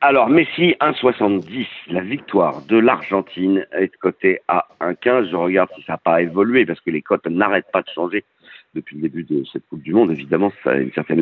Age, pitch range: 50-69, 95-130 Hz